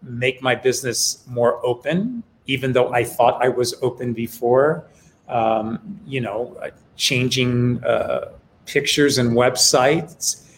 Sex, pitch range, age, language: male, 120-145 Hz, 40-59, English